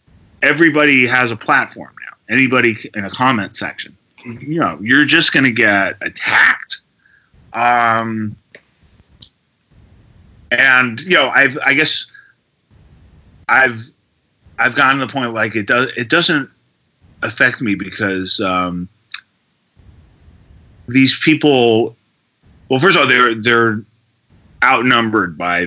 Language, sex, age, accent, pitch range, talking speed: English, male, 30-49, American, 95-120 Hz, 115 wpm